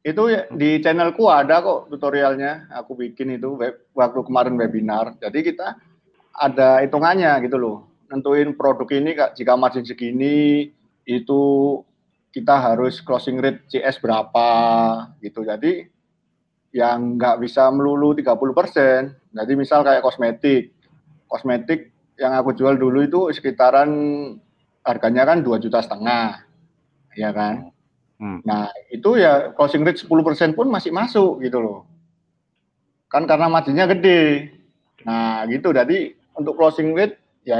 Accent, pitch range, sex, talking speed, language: native, 120-150 Hz, male, 130 wpm, Indonesian